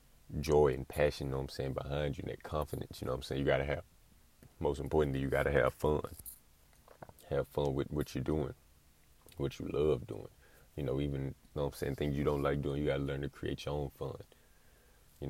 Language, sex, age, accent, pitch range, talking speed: English, male, 30-49, American, 70-75 Hz, 230 wpm